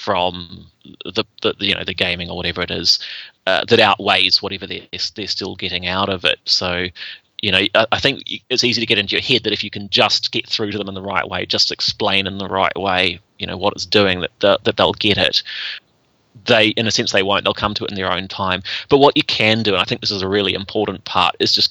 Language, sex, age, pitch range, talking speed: English, male, 30-49, 95-110 Hz, 265 wpm